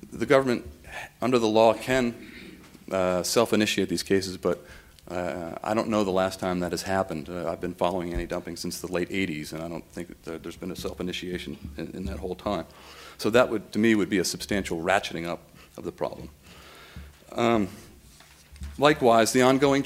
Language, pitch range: English, 85-115 Hz